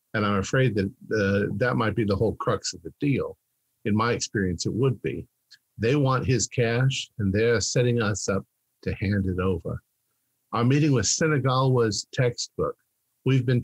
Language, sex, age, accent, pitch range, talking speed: English, male, 50-69, American, 105-130 Hz, 180 wpm